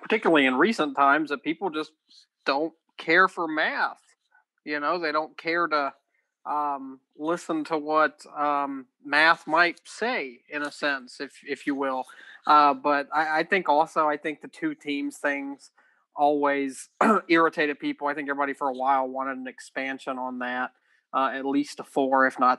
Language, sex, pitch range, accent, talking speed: English, male, 130-150 Hz, American, 175 wpm